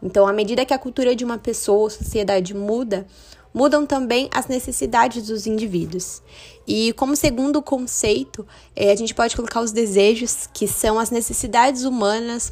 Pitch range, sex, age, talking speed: 215-260 Hz, female, 20-39, 160 wpm